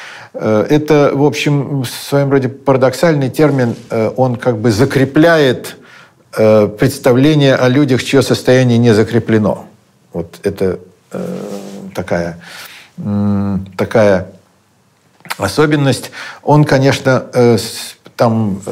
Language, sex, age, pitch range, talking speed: Russian, male, 50-69, 100-130 Hz, 85 wpm